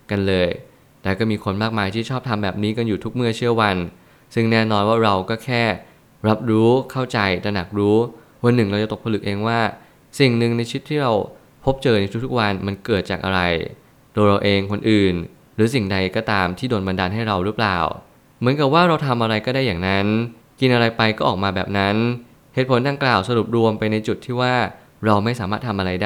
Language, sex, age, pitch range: Thai, male, 20-39, 100-120 Hz